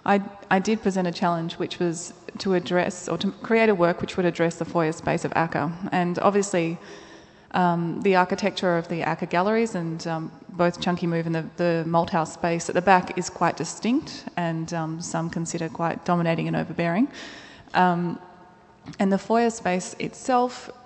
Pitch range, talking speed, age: 170-205 Hz, 180 wpm, 20-39